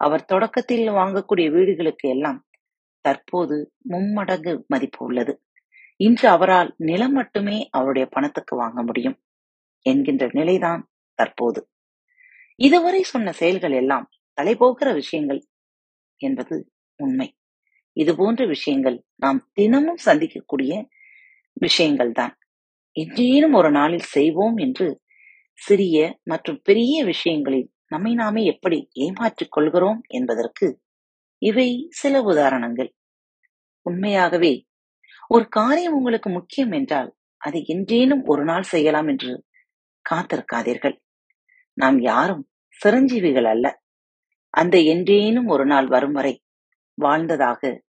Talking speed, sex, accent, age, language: 95 wpm, female, native, 30-49, Tamil